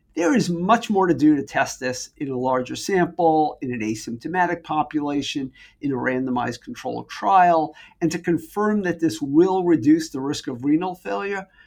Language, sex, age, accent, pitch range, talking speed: English, male, 50-69, American, 145-195 Hz, 175 wpm